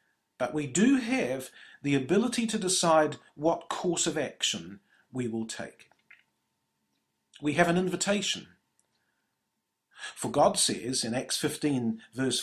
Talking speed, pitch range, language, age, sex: 125 wpm, 125-175 Hz, English, 50-69, male